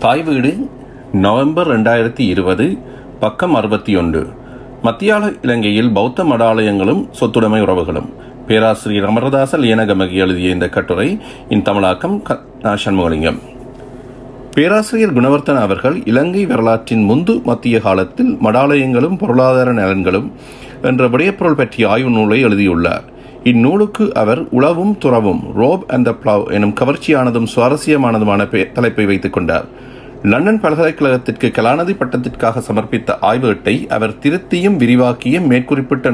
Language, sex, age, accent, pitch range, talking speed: Tamil, male, 40-59, native, 105-135 Hz, 105 wpm